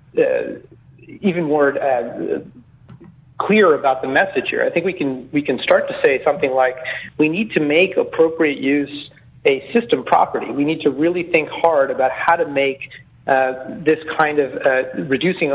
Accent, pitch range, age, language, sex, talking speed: American, 135-165 Hz, 40-59, English, male, 175 wpm